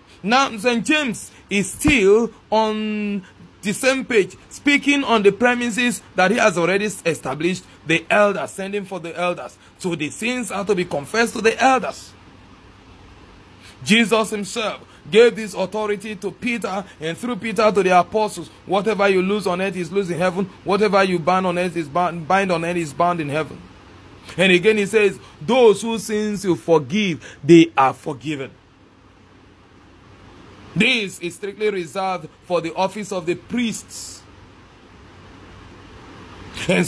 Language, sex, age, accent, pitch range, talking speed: English, male, 30-49, Nigerian, 165-215 Hz, 145 wpm